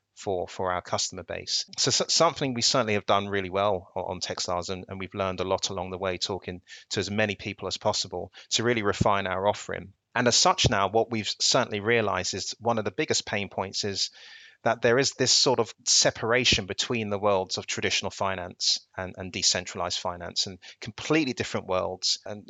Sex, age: male, 30-49